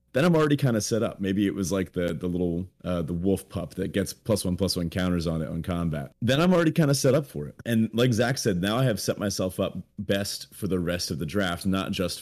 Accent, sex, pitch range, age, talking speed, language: American, male, 90-120 Hz, 30-49, 280 wpm, English